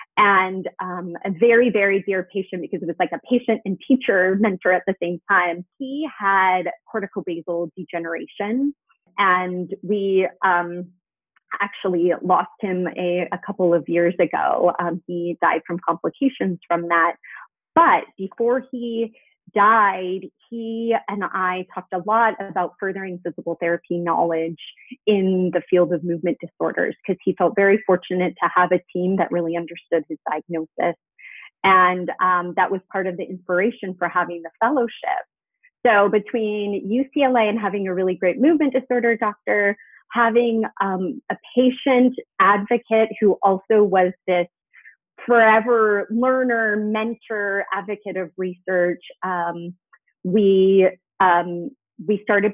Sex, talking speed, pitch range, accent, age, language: female, 140 wpm, 180-225 Hz, American, 30-49, English